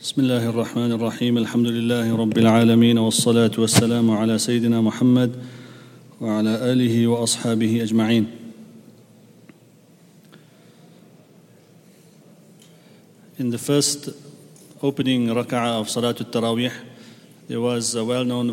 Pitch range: 125-150 Hz